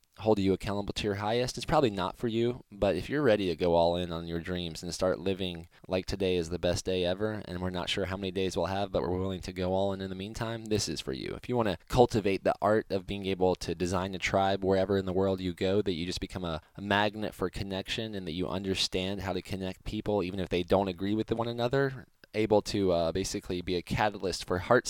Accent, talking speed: American, 260 wpm